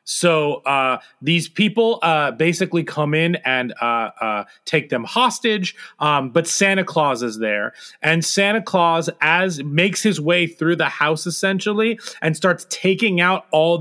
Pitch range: 135-180 Hz